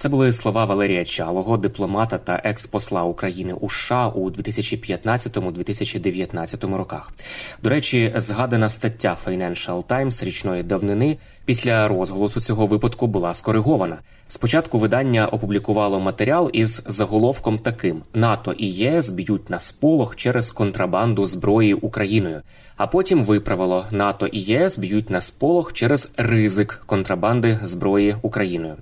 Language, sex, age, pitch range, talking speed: Ukrainian, male, 20-39, 95-115 Hz, 125 wpm